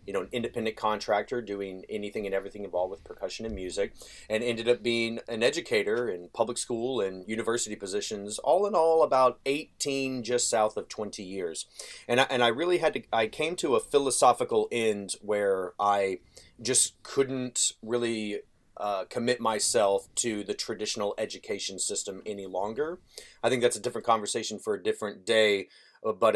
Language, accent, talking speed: English, American, 165 wpm